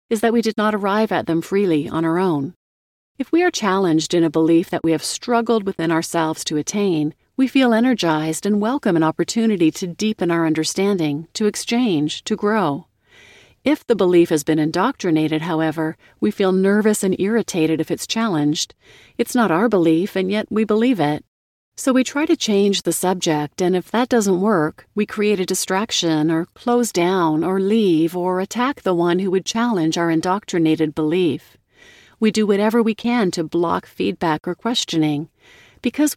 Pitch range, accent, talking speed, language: 165-220 Hz, American, 180 wpm, English